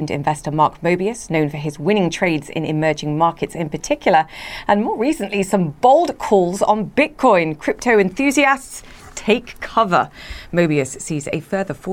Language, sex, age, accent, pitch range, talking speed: English, female, 30-49, British, 150-190 Hz, 145 wpm